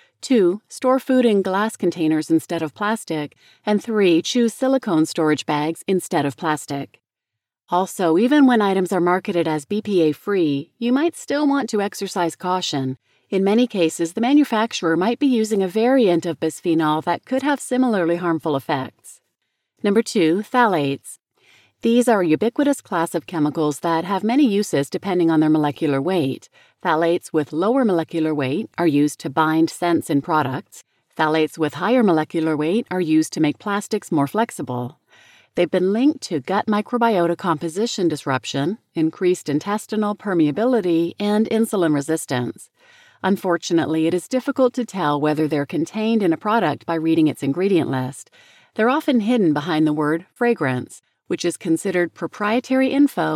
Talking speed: 155 wpm